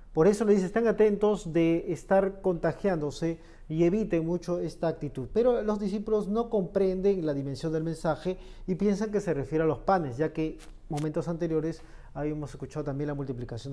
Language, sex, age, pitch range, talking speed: Spanish, male, 40-59, 145-185 Hz, 175 wpm